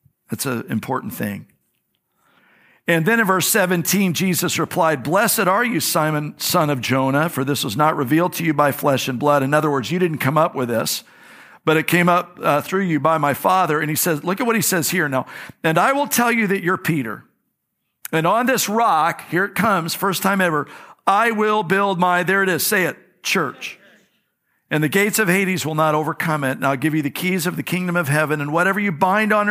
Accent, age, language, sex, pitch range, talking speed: American, 50-69, English, male, 140-185 Hz, 225 wpm